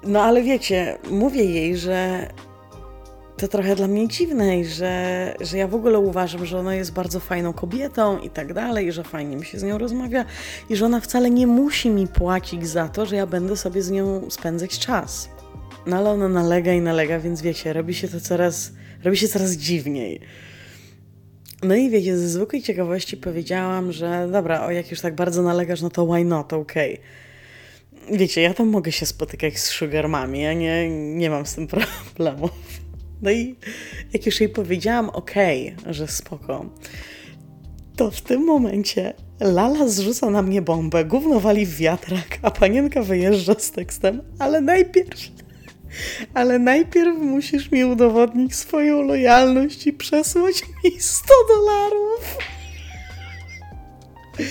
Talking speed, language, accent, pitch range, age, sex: 155 wpm, Polish, native, 165-225 Hz, 20-39, female